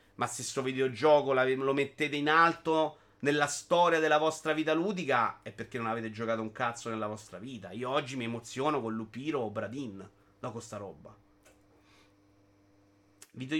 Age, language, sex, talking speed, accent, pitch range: 30-49, Italian, male, 165 wpm, native, 115-165 Hz